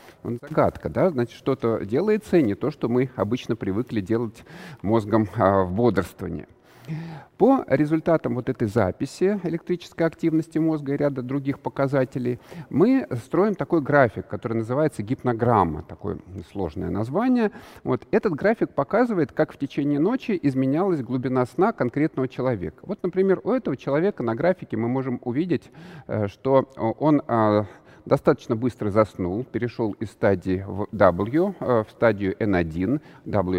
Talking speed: 130 wpm